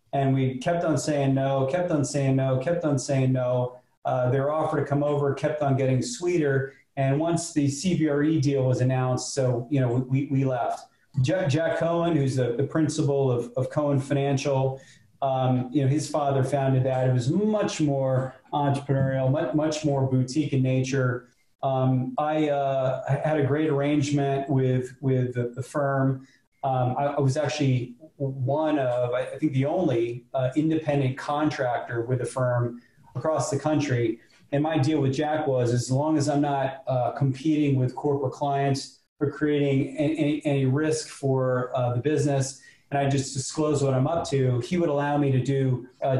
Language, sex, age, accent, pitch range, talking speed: English, male, 30-49, American, 130-150 Hz, 180 wpm